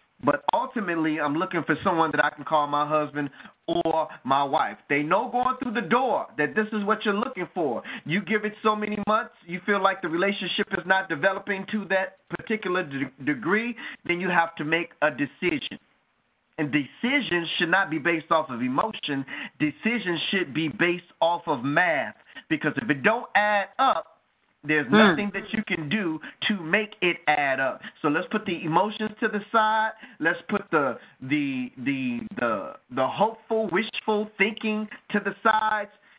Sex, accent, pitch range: male, American, 160-215 Hz